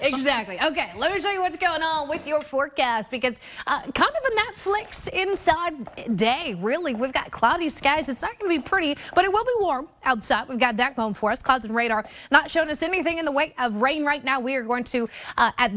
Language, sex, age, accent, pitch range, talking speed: English, female, 30-49, American, 215-295 Hz, 240 wpm